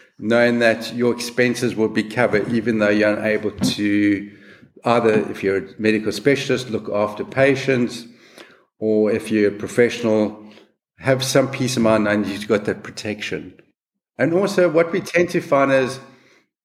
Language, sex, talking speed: English, male, 160 wpm